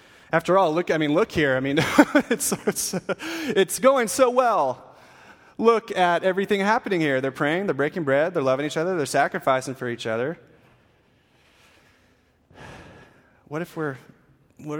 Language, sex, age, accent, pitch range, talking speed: English, male, 30-49, American, 130-180 Hz, 155 wpm